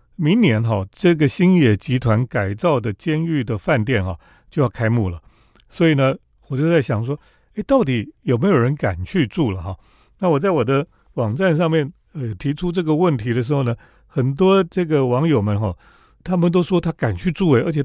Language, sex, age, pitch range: Chinese, male, 40-59, 110-160 Hz